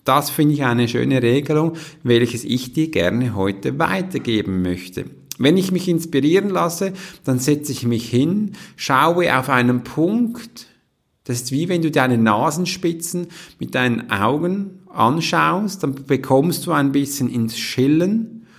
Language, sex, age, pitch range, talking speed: German, male, 50-69, 115-155 Hz, 145 wpm